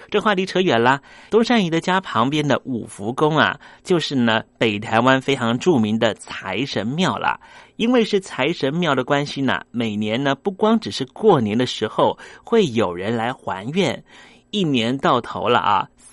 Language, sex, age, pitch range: Chinese, male, 30-49, 120-180 Hz